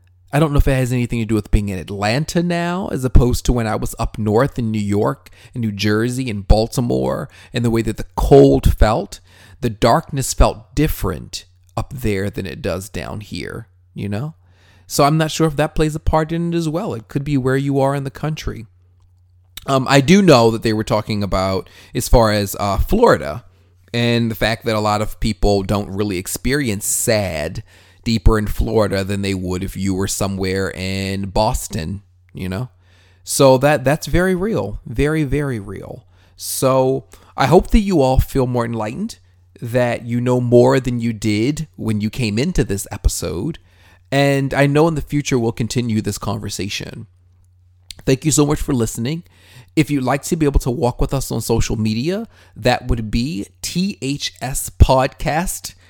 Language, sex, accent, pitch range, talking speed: English, male, American, 95-135 Hz, 190 wpm